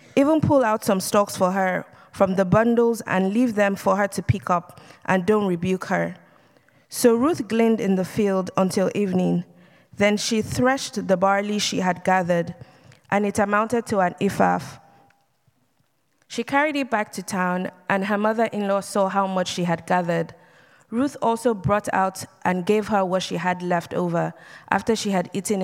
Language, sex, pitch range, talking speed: English, female, 180-215 Hz, 175 wpm